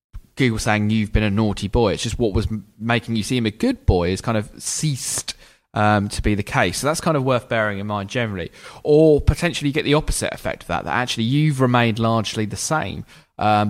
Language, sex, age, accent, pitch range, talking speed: English, male, 20-39, British, 95-120 Hz, 230 wpm